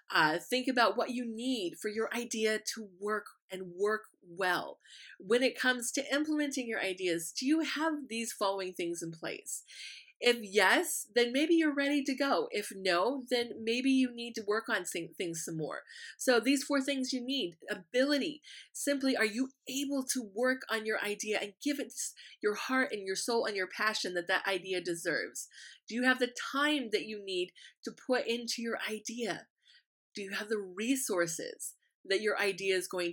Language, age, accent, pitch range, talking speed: English, 30-49, American, 195-260 Hz, 185 wpm